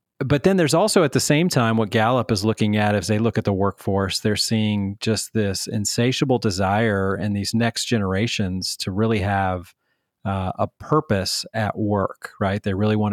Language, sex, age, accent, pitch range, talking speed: English, male, 40-59, American, 100-125 Hz, 185 wpm